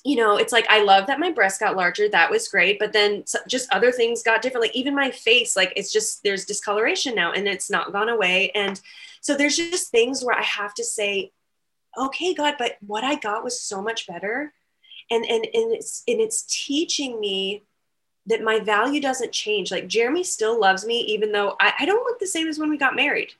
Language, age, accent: English, 20-39, American